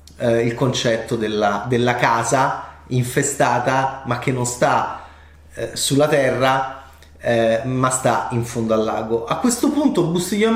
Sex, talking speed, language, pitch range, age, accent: male, 125 wpm, Italian, 120-175 Hz, 30-49, native